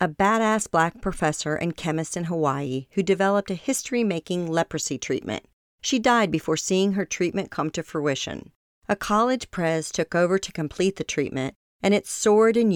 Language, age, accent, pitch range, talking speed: English, 40-59, American, 150-200 Hz, 170 wpm